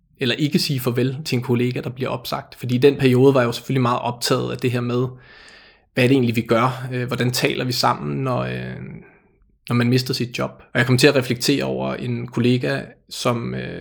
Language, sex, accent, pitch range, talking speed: Danish, male, native, 120-140 Hz, 215 wpm